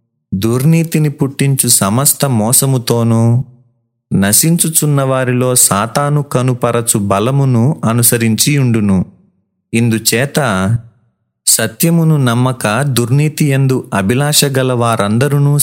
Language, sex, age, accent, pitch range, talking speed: Telugu, male, 30-49, native, 105-135 Hz, 60 wpm